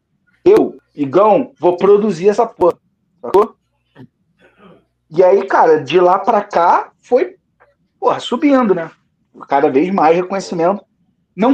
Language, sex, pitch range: Portuguese, male, 160-255 Hz